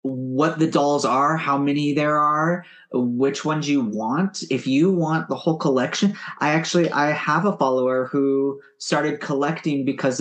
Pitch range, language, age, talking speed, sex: 135-170 Hz, English, 30-49, 165 wpm, male